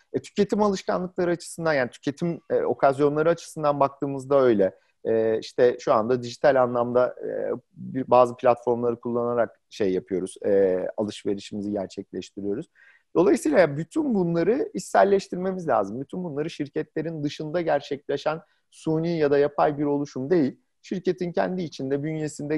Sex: male